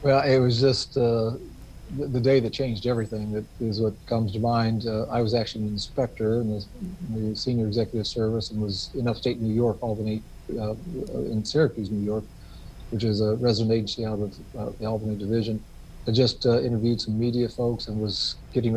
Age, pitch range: 40-59, 110-120 Hz